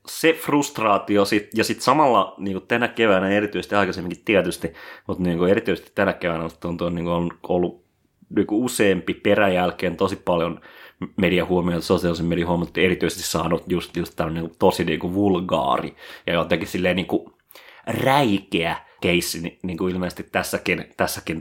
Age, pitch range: 30-49, 90-105 Hz